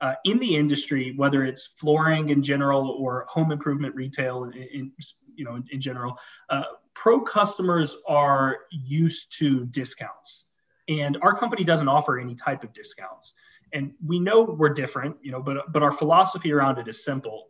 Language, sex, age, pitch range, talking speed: English, male, 30-49, 135-165 Hz, 175 wpm